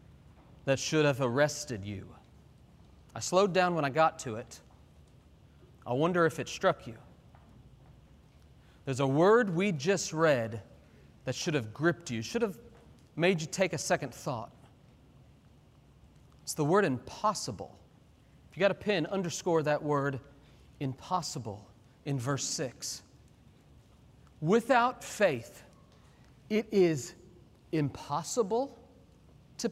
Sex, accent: male, American